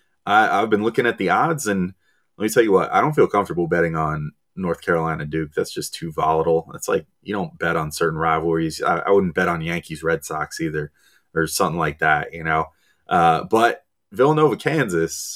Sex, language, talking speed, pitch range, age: male, English, 205 wpm, 80-115 Hz, 30-49